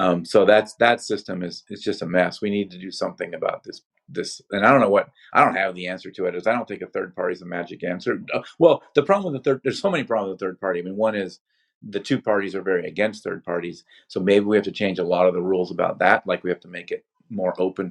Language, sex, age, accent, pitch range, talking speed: English, male, 40-59, American, 90-135 Hz, 300 wpm